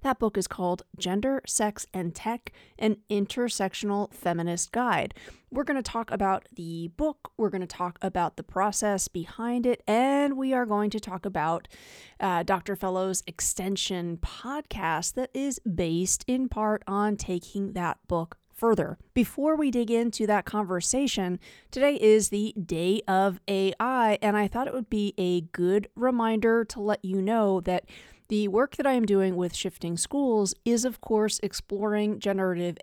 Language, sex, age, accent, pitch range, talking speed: English, female, 30-49, American, 190-235 Hz, 165 wpm